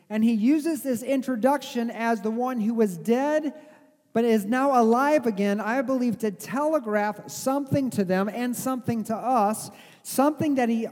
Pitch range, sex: 220-275 Hz, male